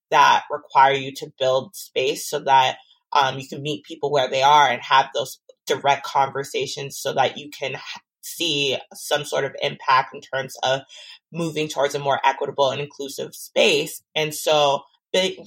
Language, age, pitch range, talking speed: English, 20-39, 140-165 Hz, 170 wpm